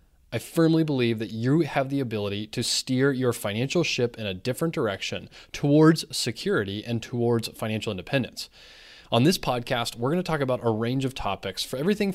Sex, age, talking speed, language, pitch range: male, 20-39, 185 wpm, English, 115-145 Hz